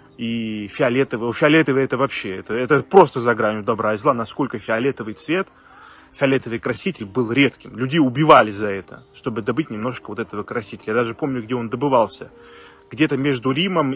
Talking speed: 170 wpm